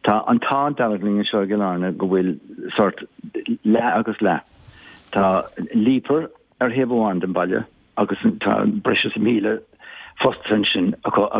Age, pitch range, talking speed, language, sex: 60-79, 105-125 Hz, 130 wpm, English, male